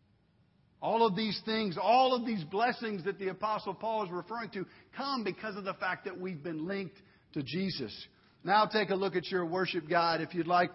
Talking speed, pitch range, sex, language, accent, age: 205 wpm, 170-215 Hz, male, English, American, 50-69